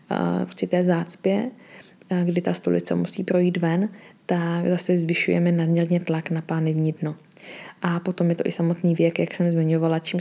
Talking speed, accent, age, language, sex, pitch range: 165 wpm, native, 20-39, Czech, female, 165-185 Hz